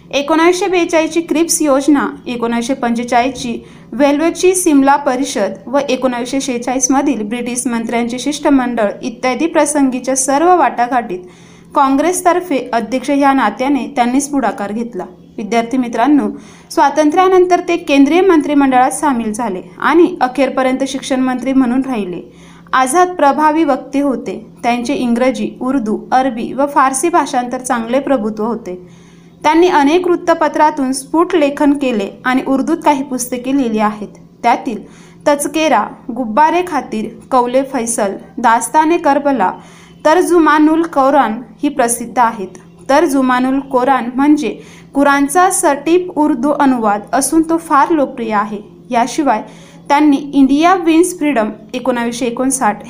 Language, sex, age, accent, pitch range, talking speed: Marathi, female, 20-39, native, 240-295 Hz, 105 wpm